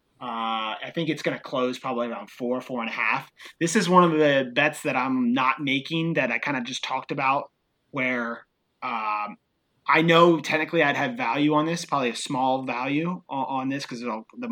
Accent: American